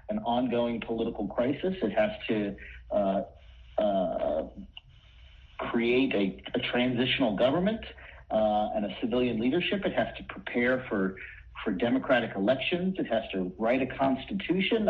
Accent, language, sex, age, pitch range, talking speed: American, English, male, 50-69, 115-160 Hz, 135 wpm